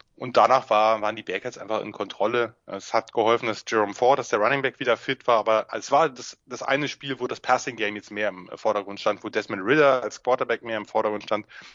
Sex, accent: male, German